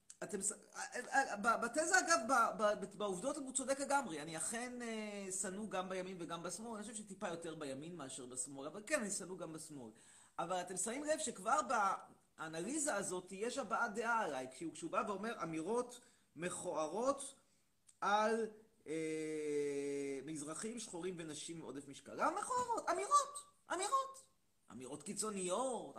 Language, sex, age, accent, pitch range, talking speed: Hebrew, male, 30-49, native, 185-275 Hz, 130 wpm